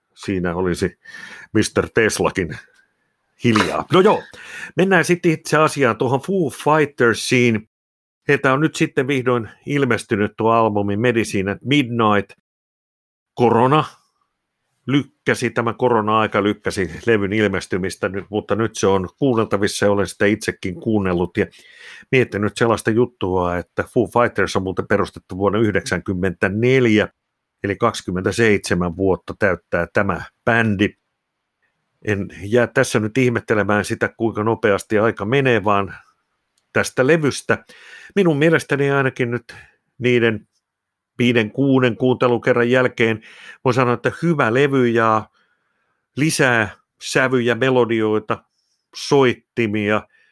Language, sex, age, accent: Finnish, male, 50-69, native